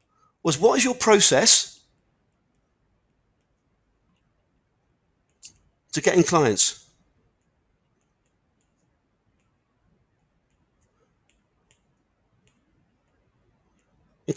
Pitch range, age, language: 140-190 Hz, 40-59, English